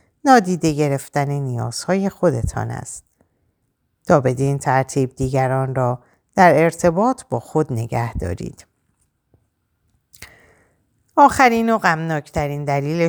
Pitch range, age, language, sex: 120-175 Hz, 50-69, Persian, female